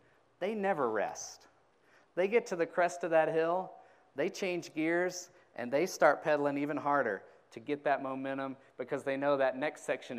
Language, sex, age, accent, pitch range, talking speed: English, male, 30-49, American, 140-170 Hz, 175 wpm